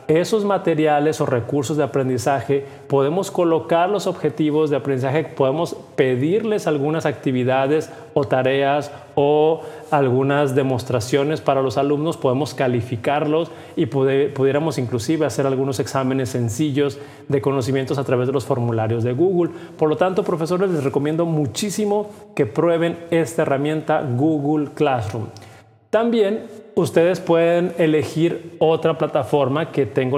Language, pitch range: Spanish, 135-165 Hz